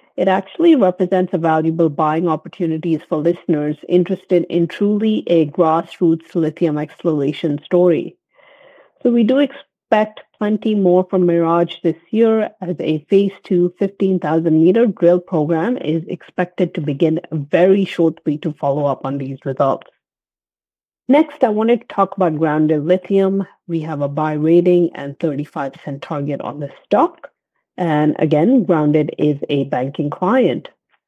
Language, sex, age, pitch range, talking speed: English, female, 50-69, 160-195 Hz, 140 wpm